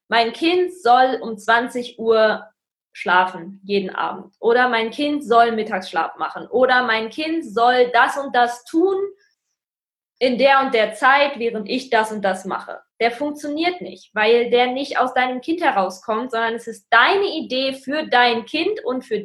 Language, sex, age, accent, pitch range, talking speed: German, female, 20-39, German, 230-315 Hz, 170 wpm